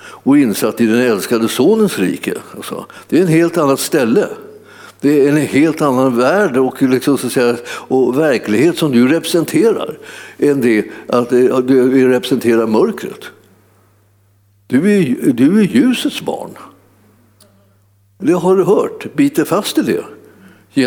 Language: Swedish